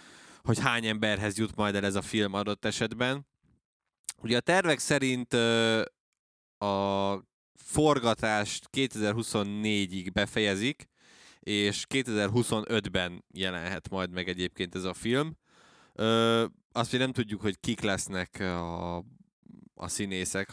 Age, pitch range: 20-39, 95-115 Hz